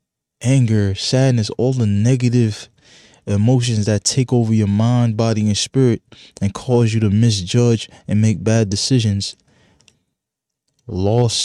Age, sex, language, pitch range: 20-39, male, English, 95-115 Hz